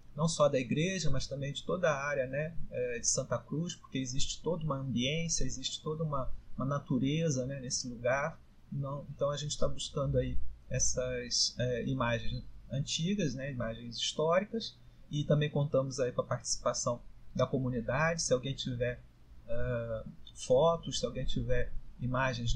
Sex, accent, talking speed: male, Brazilian, 145 wpm